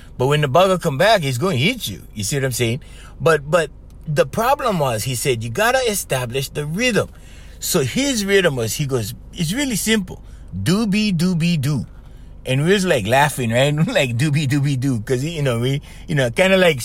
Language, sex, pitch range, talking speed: English, male, 130-190 Hz, 210 wpm